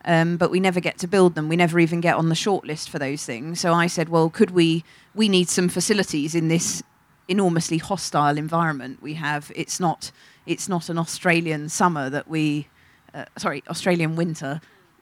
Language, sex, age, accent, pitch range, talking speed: English, female, 30-49, British, 155-180 Hz, 190 wpm